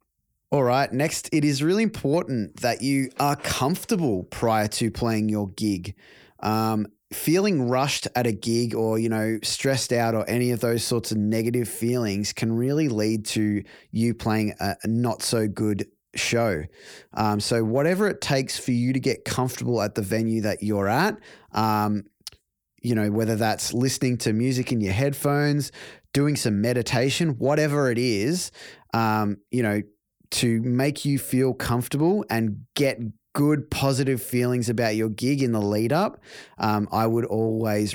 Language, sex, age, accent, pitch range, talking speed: English, male, 20-39, Australian, 105-130 Hz, 160 wpm